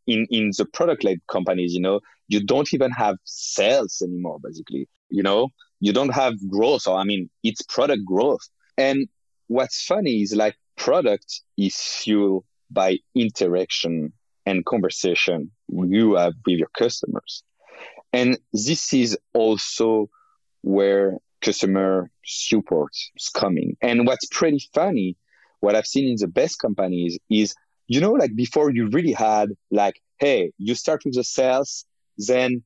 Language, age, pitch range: English, 30-49, 95-125 Hz